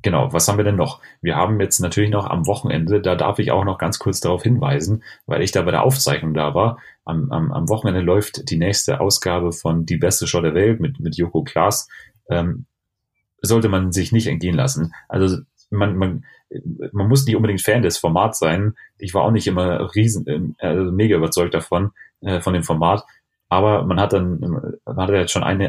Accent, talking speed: German, 205 wpm